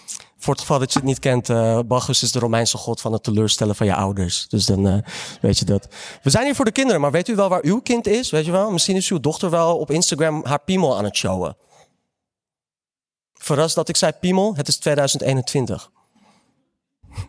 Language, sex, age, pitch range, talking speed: Dutch, male, 30-49, 115-180 Hz, 220 wpm